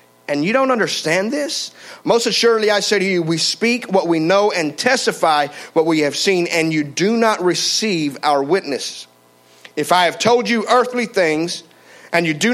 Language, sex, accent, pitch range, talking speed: English, male, American, 140-195 Hz, 185 wpm